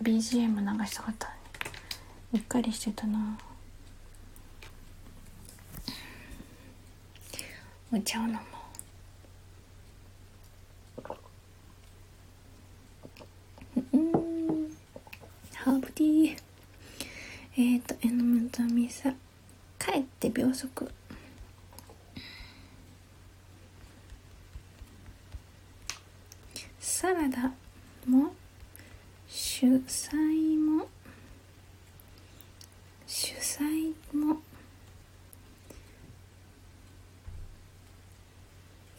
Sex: female